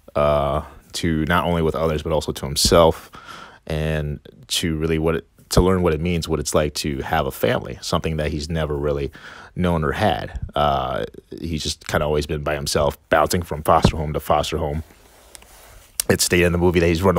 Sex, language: male, English